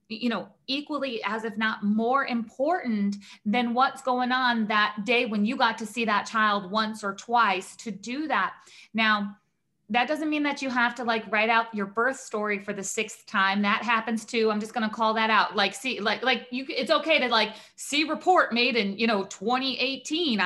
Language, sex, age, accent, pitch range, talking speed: English, female, 30-49, American, 210-260 Hz, 205 wpm